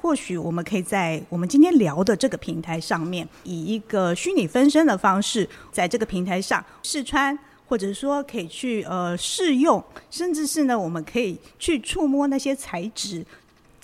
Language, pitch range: Chinese, 180-270 Hz